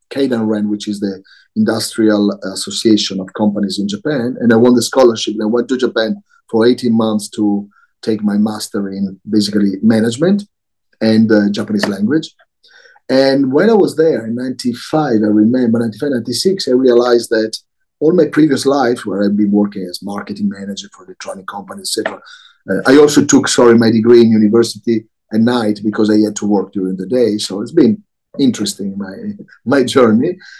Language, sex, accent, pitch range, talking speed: English, male, Italian, 105-150 Hz, 175 wpm